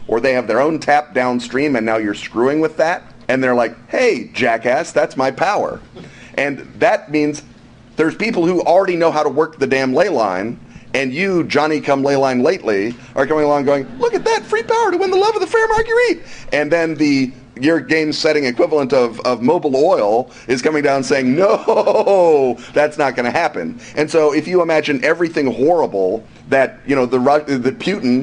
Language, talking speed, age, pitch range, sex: English, 195 wpm, 40-59, 120-155 Hz, male